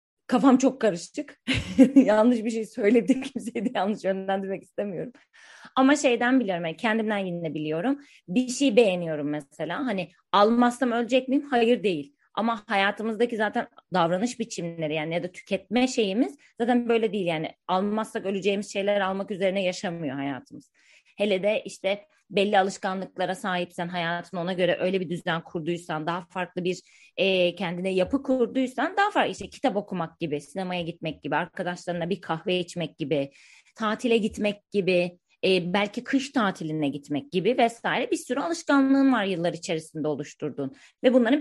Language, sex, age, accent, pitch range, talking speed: Turkish, female, 30-49, native, 175-240 Hz, 150 wpm